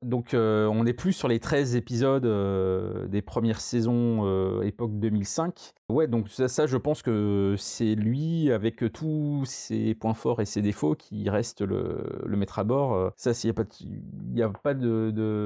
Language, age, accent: French, 30-49, French